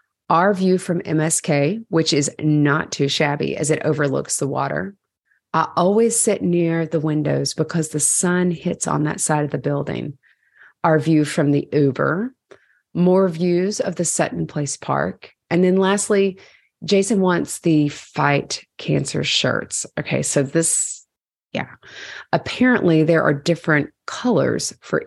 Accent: American